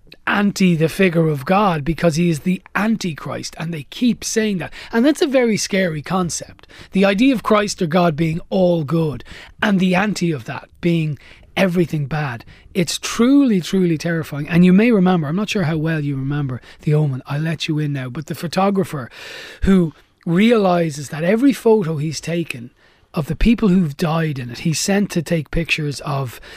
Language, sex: English, male